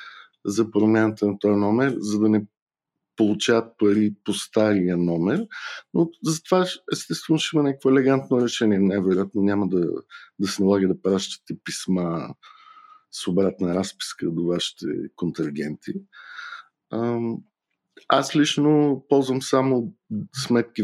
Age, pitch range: 50-69, 100-140 Hz